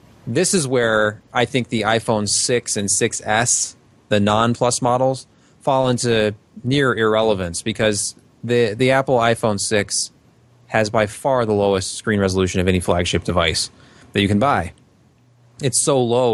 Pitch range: 100-120 Hz